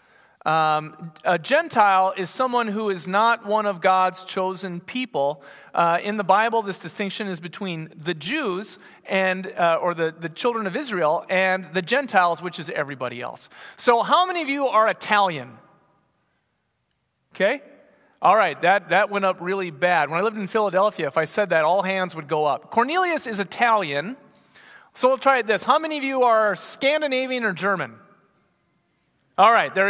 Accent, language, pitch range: American, English, 185-235 Hz